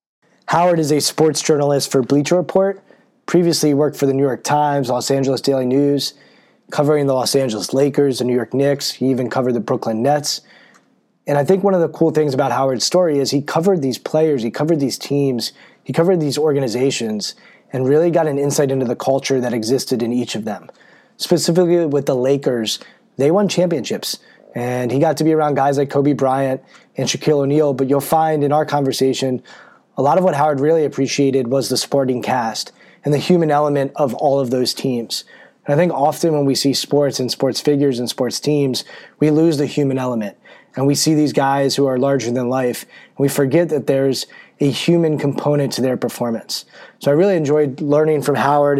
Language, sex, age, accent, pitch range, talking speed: English, male, 20-39, American, 135-155 Hz, 200 wpm